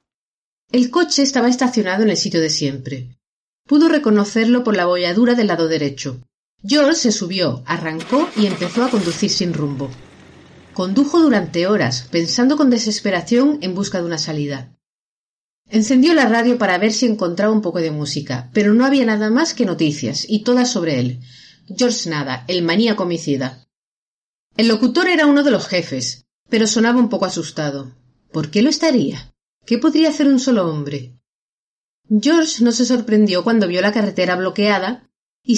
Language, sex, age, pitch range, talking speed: Spanish, female, 40-59, 160-245 Hz, 165 wpm